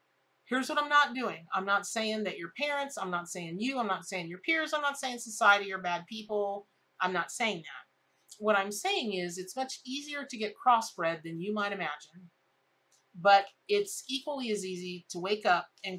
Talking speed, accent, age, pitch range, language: 205 wpm, American, 40-59, 165-220 Hz, English